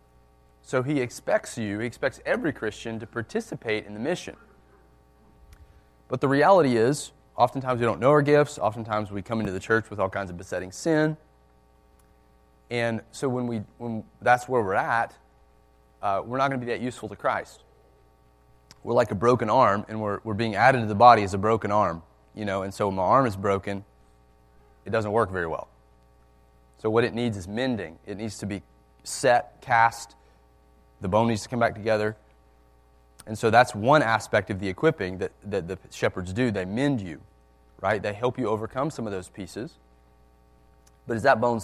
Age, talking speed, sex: 30-49, 190 wpm, male